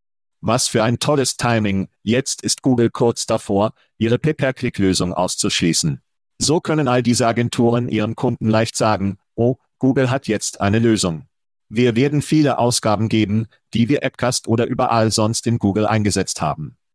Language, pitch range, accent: German, 105-125 Hz, German